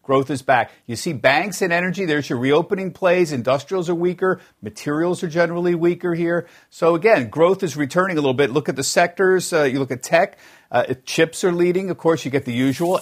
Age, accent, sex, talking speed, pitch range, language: 50-69, American, male, 215 wpm, 135-175 Hz, English